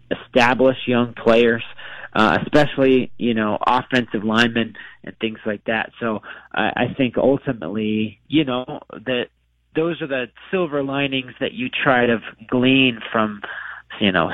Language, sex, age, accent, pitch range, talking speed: English, male, 30-49, American, 110-130 Hz, 140 wpm